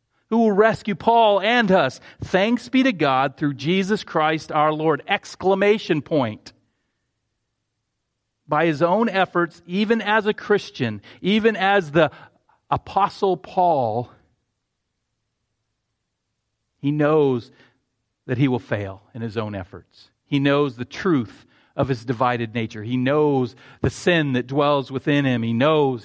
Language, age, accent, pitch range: English, 40-59, American, 120-175 Hz